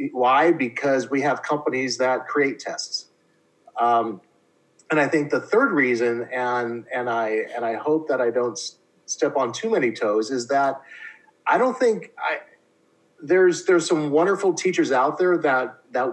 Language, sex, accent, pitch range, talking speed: English, male, American, 115-155 Hz, 165 wpm